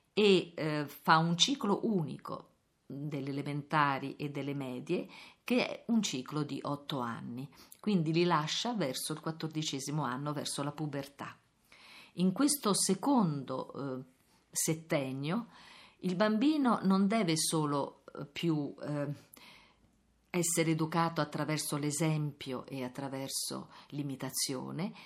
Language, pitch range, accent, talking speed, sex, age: Italian, 145-200 Hz, native, 115 wpm, female, 50-69